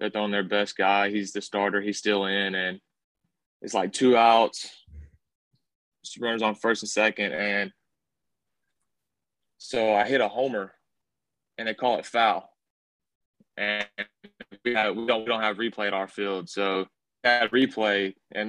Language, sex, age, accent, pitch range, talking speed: English, male, 20-39, American, 100-110 Hz, 160 wpm